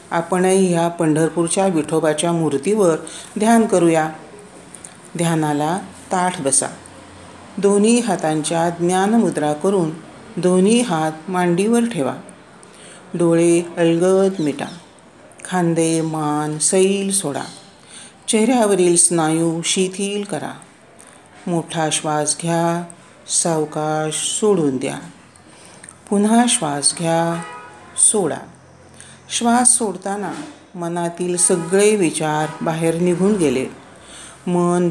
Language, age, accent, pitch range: Marathi, 50-69, native, 160-200 Hz